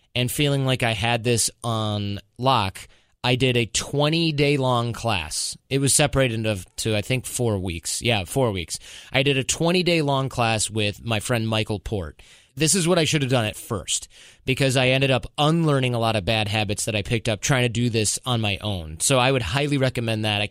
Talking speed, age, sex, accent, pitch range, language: 210 wpm, 20-39, male, American, 105-135 Hz, English